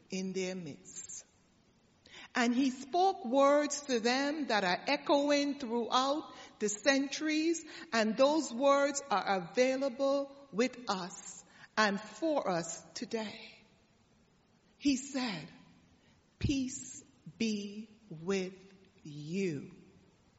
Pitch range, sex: 190-250 Hz, female